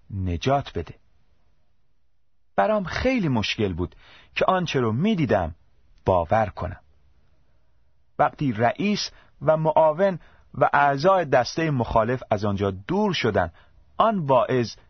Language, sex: Persian, male